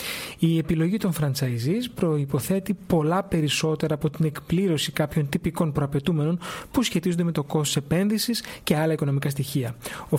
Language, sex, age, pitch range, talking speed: Greek, male, 30-49, 150-195 Hz, 140 wpm